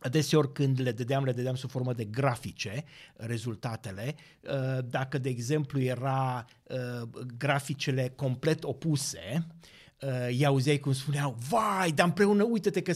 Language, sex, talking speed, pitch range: Romanian, male, 125 wpm, 130-175 Hz